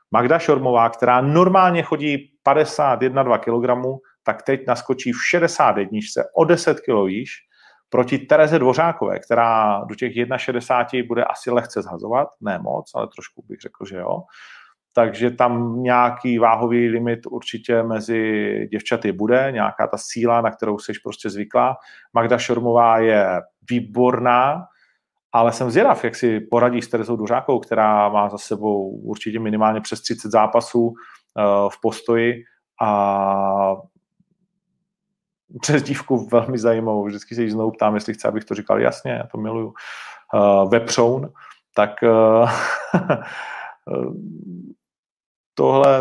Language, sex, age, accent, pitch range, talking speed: Czech, male, 40-59, native, 110-135 Hz, 135 wpm